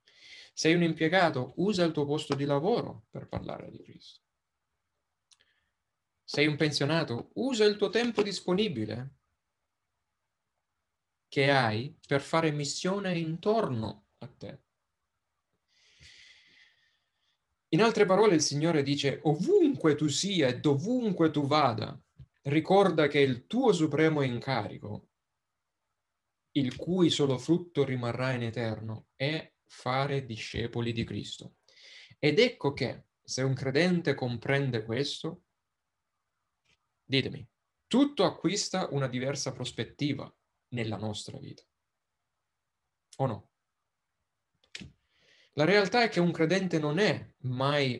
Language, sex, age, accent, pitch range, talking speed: Italian, male, 30-49, native, 130-170 Hz, 110 wpm